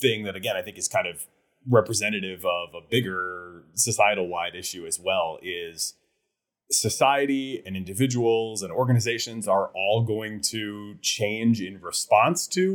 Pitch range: 105-150 Hz